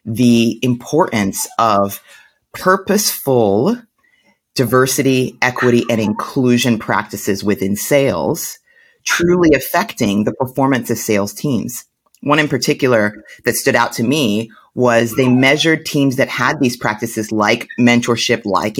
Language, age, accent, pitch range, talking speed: English, 30-49, American, 115-140 Hz, 120 wpm